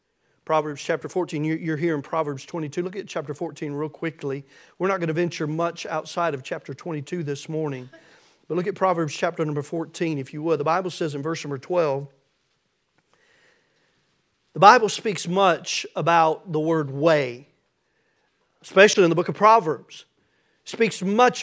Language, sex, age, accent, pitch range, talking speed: English, male, 40-59, American, 160-225 Hz, 170 wpm